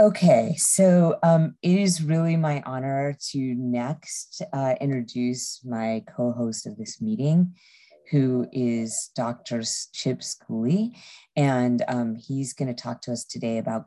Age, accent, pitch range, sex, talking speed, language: 30-49, American, 115-140 Hz, female, 135 wpm, English